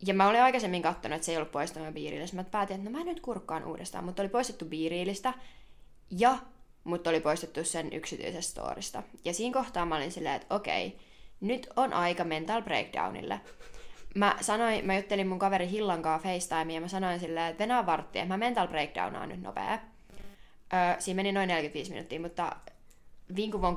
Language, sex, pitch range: Finnish, female, 165-205 Hz